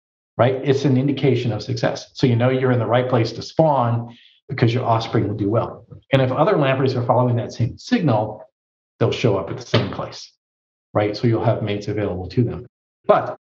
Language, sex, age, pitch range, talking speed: English, male, 40-59, 115-145 Hz, 210 wpm